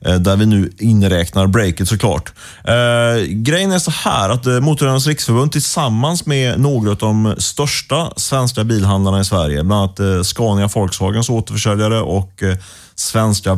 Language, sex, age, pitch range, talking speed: Swedish, male, 30-49, 95-125 Hz, 135 wpm